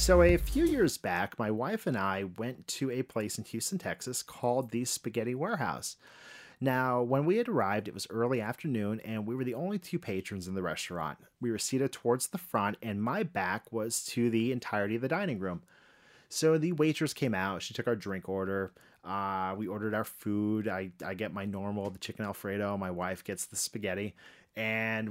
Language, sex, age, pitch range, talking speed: English, male, 30-49, 100-135 Hz, 205 wpm